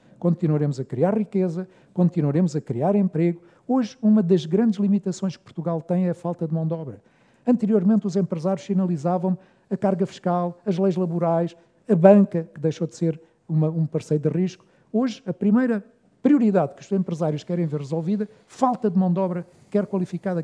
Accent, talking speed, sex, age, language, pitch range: Portuguese, 175 wpm, male, 50-69, Portuguese, 165-205 Hz